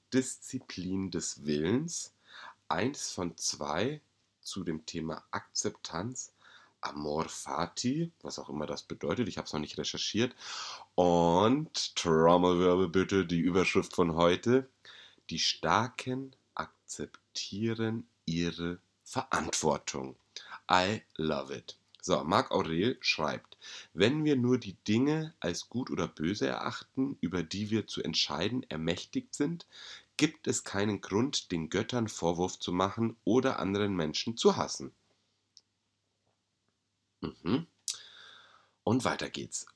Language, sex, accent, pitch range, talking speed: German, male, German, 85-115 Hz, 115 wpm